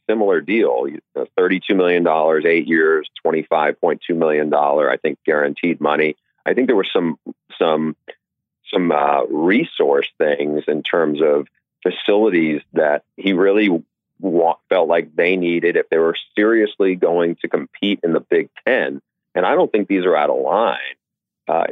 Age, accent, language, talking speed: 40-59, American, English, 170 wpm